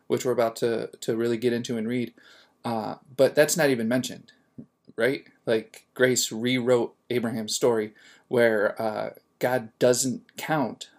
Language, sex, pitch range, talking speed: English, male, 115-135 Hz, 145 wpm